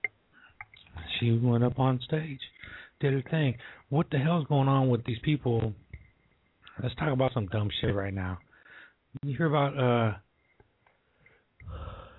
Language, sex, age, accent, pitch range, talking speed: English, male, 60-79, American, 105-130 Hz, 145 wpm